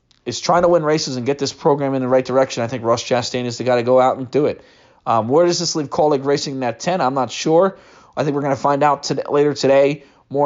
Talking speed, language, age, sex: 280 wpm, English, 30-49, male